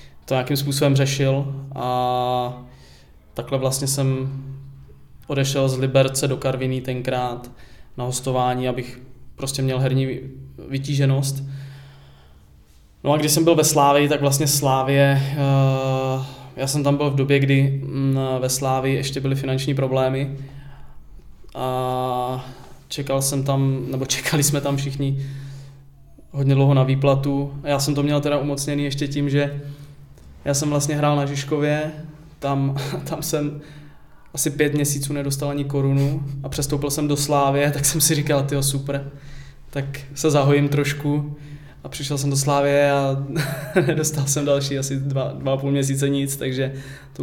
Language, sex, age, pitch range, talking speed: Czech, male, 20-39, 130-145 Hz, 145 wpm